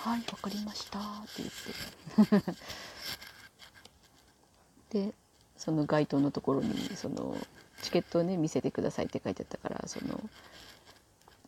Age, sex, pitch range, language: 30-49, female, 175-235 Hz, Japanese